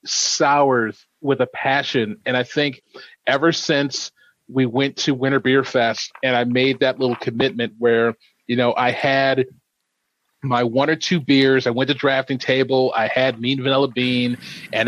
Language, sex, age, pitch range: English, male, 40-59, 120-145 Hz